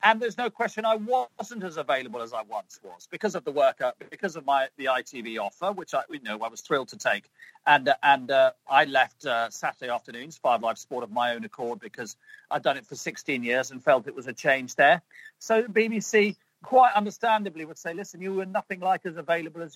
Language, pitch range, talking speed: English, 165-220 Hz, 230 wpm